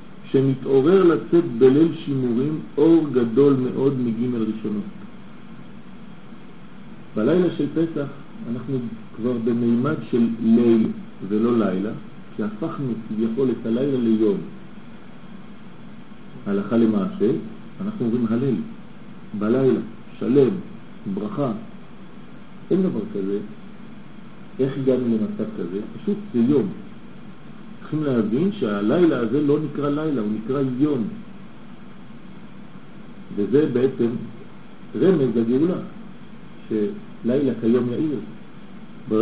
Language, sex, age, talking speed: French, male, 50-69, 95 wpm